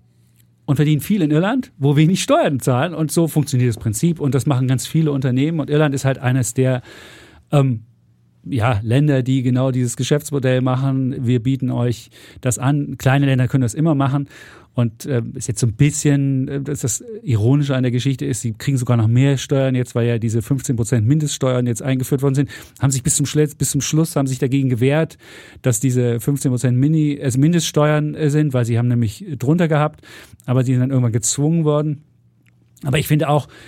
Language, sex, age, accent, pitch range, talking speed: German, male, 40-59, German, 120-145 Hz, 200 wpm